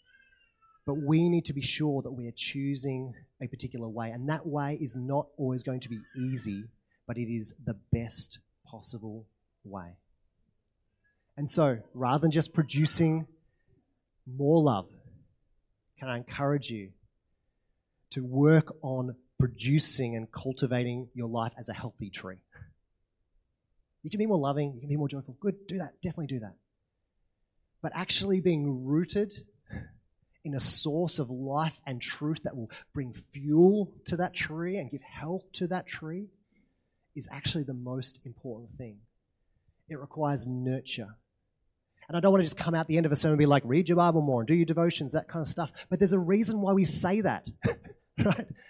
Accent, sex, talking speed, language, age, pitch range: Australian, male, 175 wpm, English, 30-49, 115-165 Hz